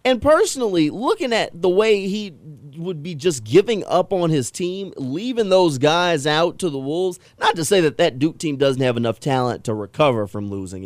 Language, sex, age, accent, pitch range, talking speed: English, male, 30-49, American, 115-155 Hz, 205 wpm